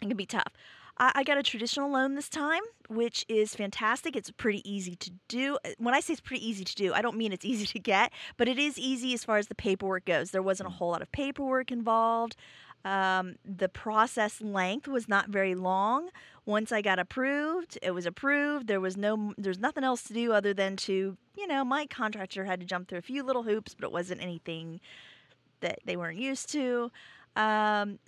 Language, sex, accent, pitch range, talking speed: English, female, American, 195-255 Hz, 215 wpm